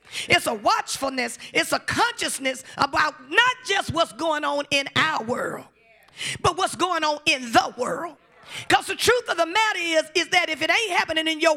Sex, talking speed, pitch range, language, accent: female, 190 wpm, 240-335 Hz, English, American